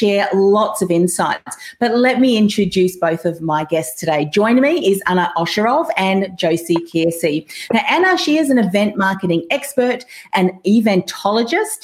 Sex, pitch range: female, 170-220 Hz